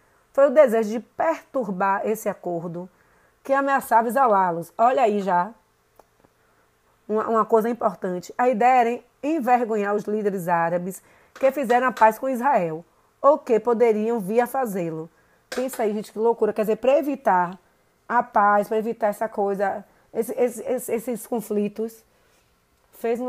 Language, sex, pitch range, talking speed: Portuguese, female, 195-250 Hz, 145 wpm